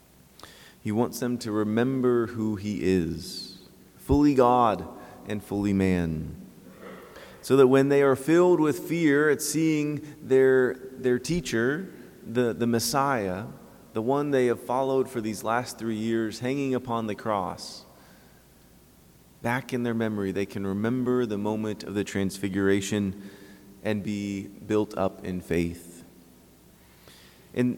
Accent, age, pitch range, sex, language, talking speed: American, 30-49, 100-130 Hz, male, English, 135 wpm